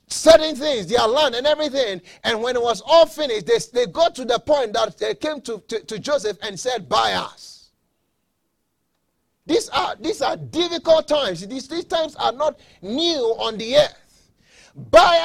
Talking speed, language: 175 wpm, English